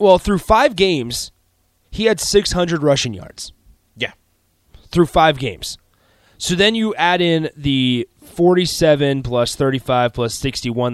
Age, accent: 20-39, American